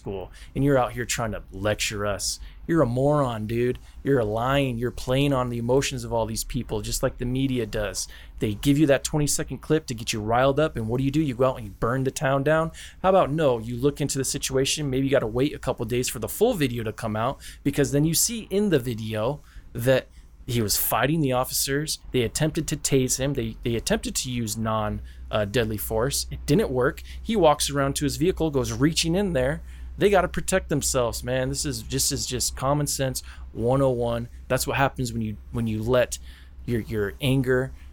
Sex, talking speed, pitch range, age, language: male, 225 wpm, 110-140 Hz, 20-39, English